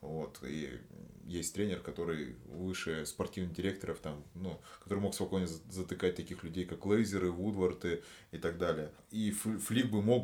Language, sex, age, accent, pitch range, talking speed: Russian, male, 30-49, native, 85-105 Hz, 150 wpm